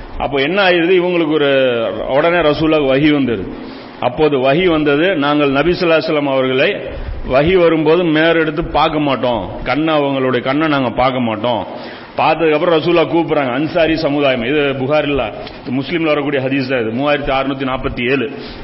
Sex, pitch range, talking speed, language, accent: male, 135-160 Hz, 130 wpm, Tamil, native